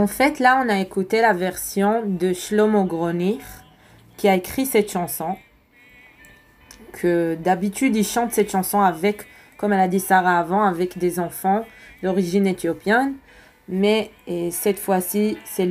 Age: 20-39